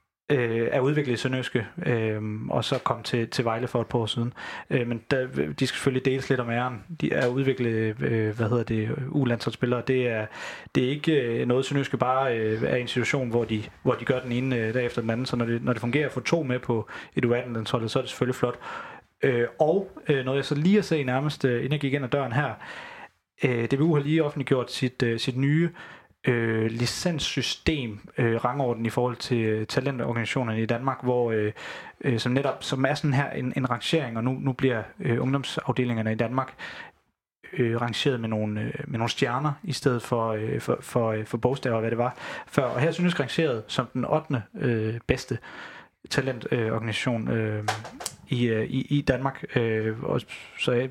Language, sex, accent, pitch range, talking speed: Danish, male, native, 115-135 Hz, 190 wpm